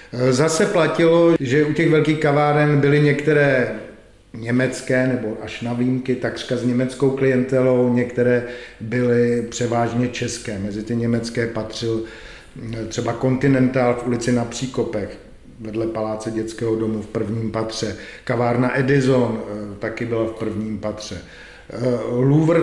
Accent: native